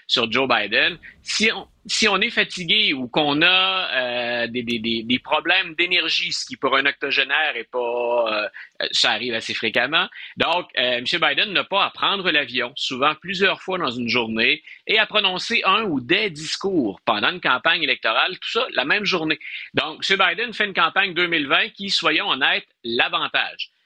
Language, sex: French, male